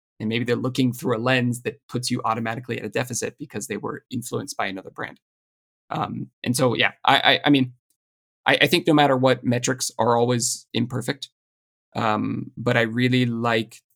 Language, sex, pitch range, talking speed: English, male, 110-130 Hz, 190 wpm